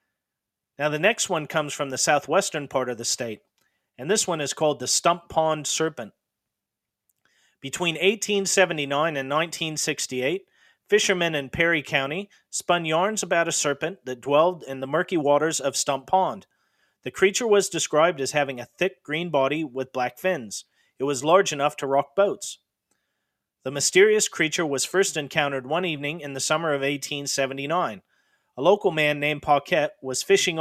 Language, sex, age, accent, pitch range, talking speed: English, male, 40-59, American, 140-175 Hz, 165 wpm